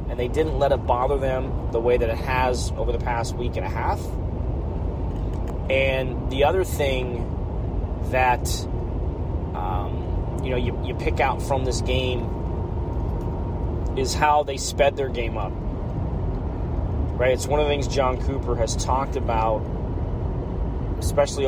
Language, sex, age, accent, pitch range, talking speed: English, male, 30-49, American, 90-130 Hz, 150 wpm